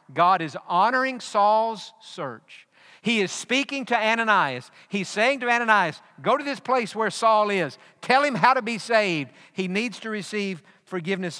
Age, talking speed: 50-69, 170 wpm